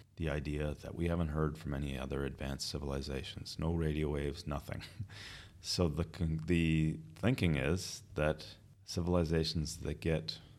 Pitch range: 80-100 Hz